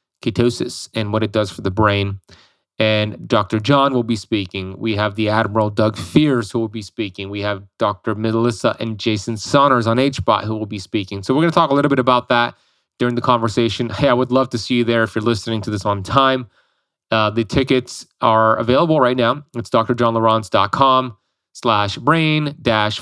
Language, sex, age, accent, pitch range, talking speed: English, male, 30-49, American, 110-130 Hz, 200 wpm